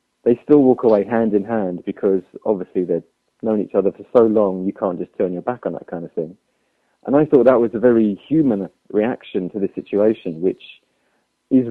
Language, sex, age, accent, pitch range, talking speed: English, male, 30-49, British, 100-115 Hz, 210 wpm